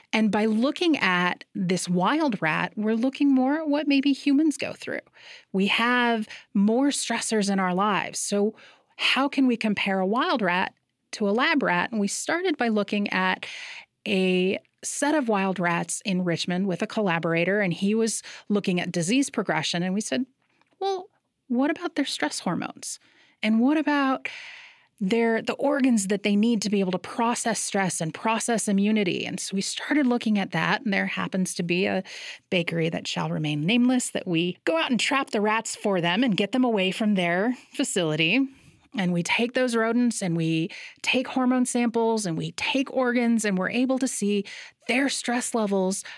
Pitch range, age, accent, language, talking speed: 190-265 Hz, 30-49, American, English, 185 wpm